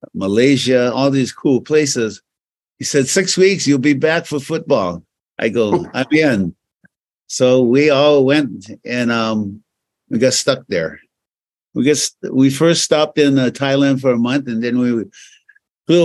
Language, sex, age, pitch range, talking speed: English, male, 50-69, 110-140 Hz, 160 wpm